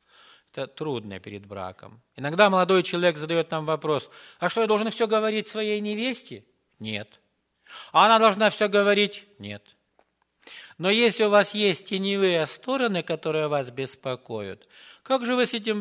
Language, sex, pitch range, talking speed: English, male, 130-200 Hz, 150 wpm